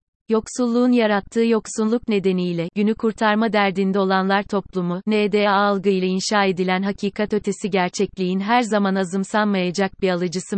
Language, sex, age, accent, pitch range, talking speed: Turkish, female, 30-49, native, 190-225 Hz, 125 wpm